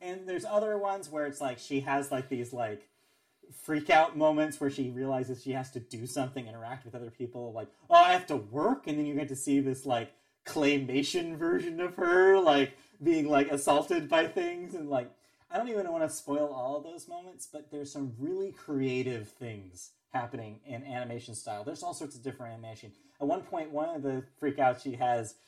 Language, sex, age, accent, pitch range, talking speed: English, male, 30-49, American, 130-190 Hz, 205 wpm